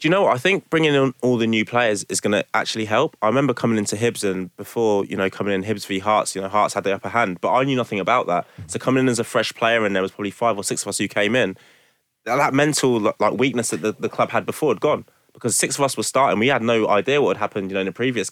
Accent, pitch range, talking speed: British, 95-115 Hz, 300 wpm